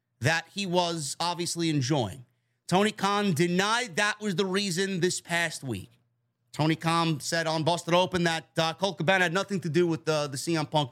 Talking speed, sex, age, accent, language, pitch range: 185 wpm, male, 30-49, American, English, 165-215 Hz